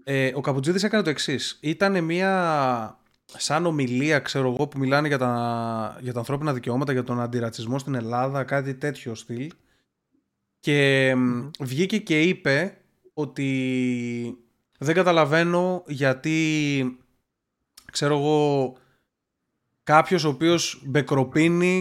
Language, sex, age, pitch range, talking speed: Greek, male, 20-39, 130-175 Hz, 115 wpm